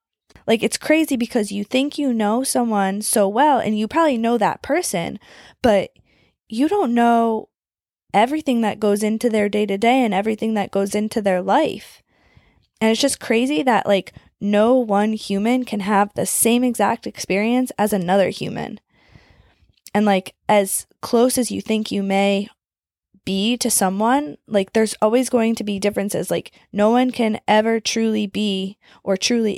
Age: 20-39